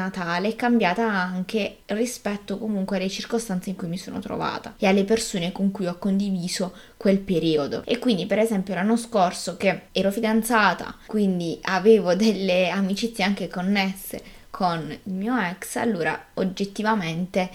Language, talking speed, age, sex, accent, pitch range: Italian, 145 wpm, 20-39, female, native, 185-225 Hz